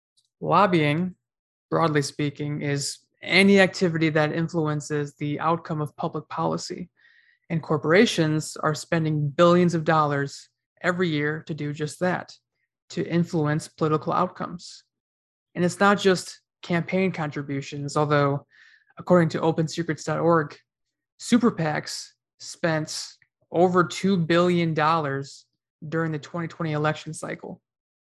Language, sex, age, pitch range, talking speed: English, male, 20-39, 150-175 Hz, 110 wpm